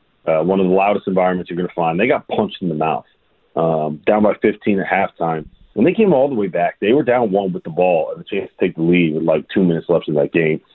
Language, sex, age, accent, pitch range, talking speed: English, male, 30-49, American, 85-110 Hz, 285 wpm